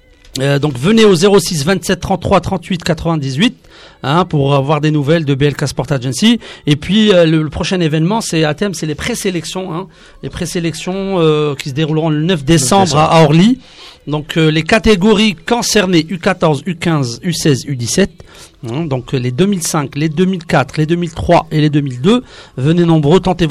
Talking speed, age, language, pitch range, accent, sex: 170 wpm, 40-59, French, 155-190 Hz, French, male